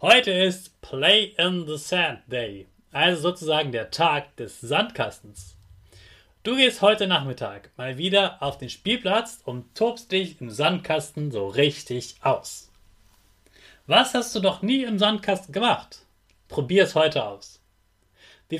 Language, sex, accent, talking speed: German, male, German, 140 wpm